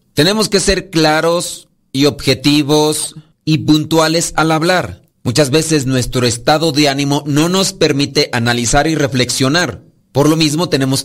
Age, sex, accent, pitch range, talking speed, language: 40-59, male, Mexican, 130-160 Hz, 140 wpm, Spanish